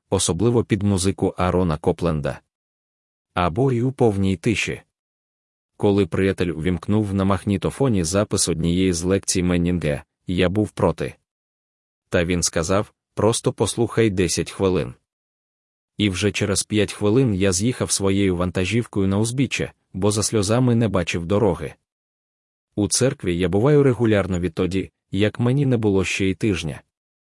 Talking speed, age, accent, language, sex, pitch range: 130 wpm, 20-39, native, Ukrainian, male, 90-110 Hz